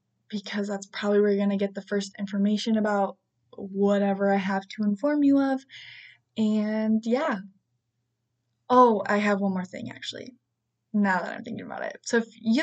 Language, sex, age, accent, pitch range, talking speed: English, female, 10-29, American, 195-235 Hz, 170 wpm